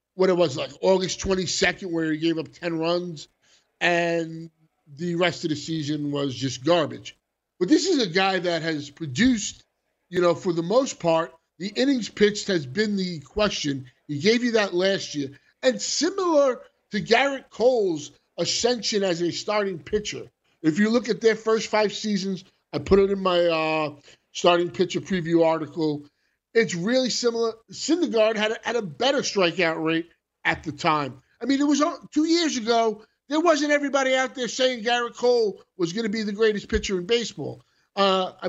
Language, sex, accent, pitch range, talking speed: English, male, American, 165-230 Hz, 180 wpm